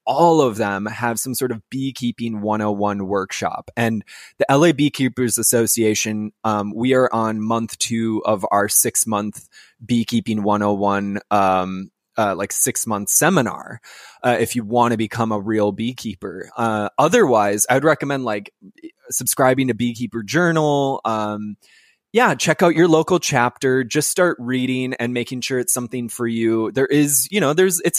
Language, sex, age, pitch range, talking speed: English, male, 20-39, 110-130 Hz, 160 wpm